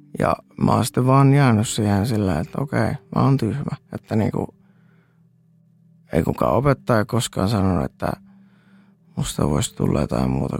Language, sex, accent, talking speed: Finnish, male, native, 140 wpm